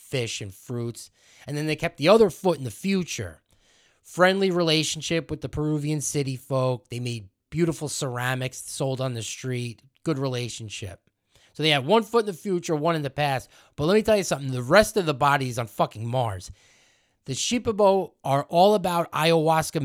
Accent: American